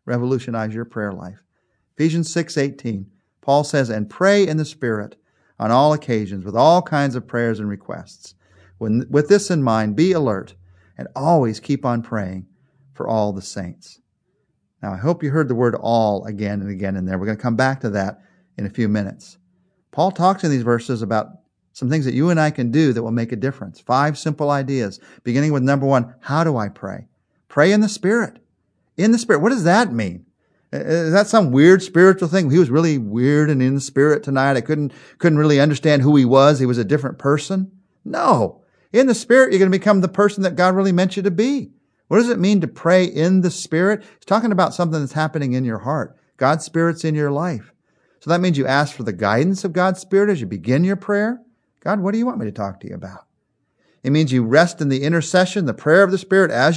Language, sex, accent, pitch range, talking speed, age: English, male, American, 120-185 Hz, 225 wpm, 40-59